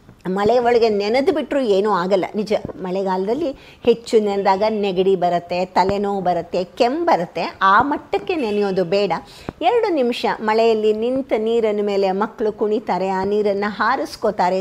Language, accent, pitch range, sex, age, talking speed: Kannada, native, 200-275 Hz, female, 50-69, 125 wpm